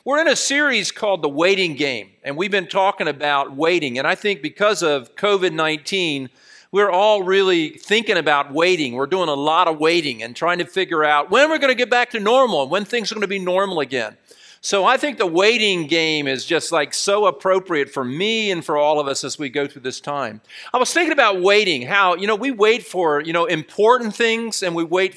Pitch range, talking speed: 160-225 Hz, 225 wpm